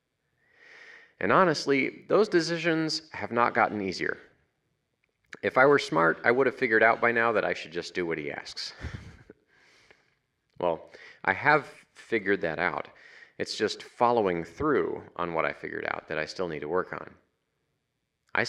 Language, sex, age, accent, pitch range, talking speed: English, male, 30-49, American, 95-140 Hz, 160 wpm